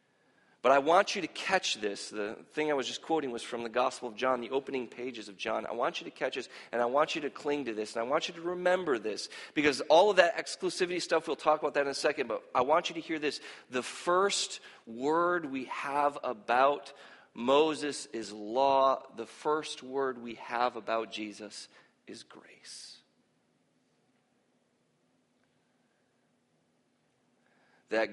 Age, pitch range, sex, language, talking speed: 40-59, 115-145 Hz, male, English, 180 wpm